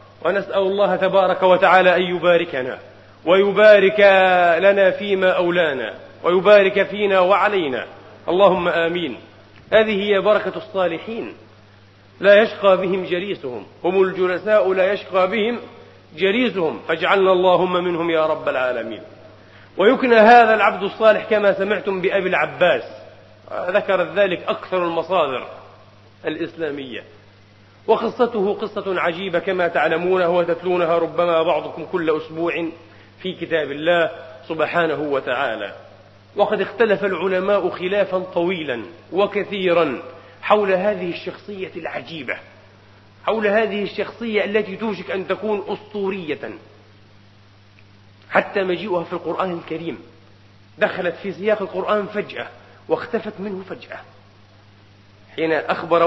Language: Arabic